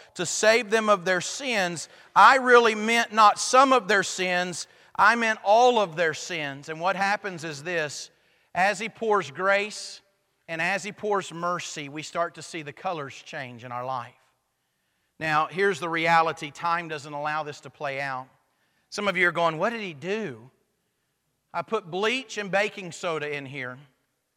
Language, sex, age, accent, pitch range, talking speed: English, male, 40-59, American, 145-195 Hz, 175 wpm